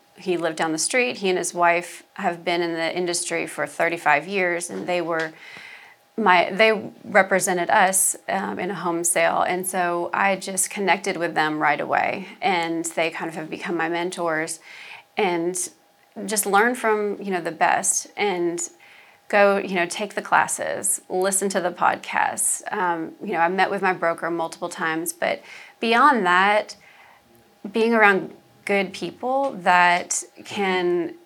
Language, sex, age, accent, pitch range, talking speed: English, female, 30-49, American, 170-200 Hz, 160 wpm